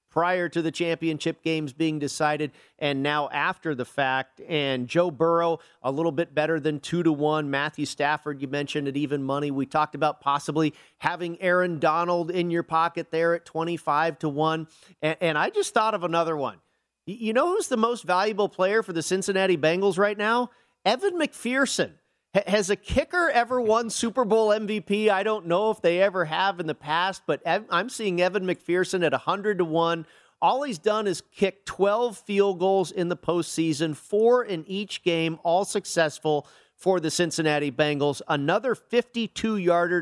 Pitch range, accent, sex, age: 155-195 Hz, American, male, 40-59